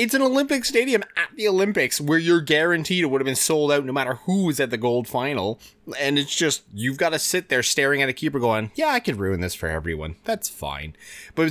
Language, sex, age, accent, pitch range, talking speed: English, male, 20-39, American, 105-170 Hz, 245 wpm